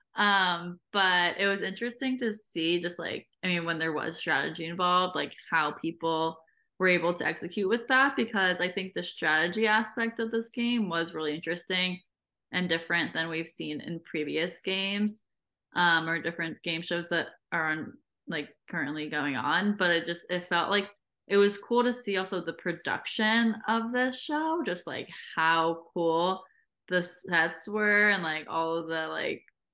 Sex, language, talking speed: female, English, 175 wpm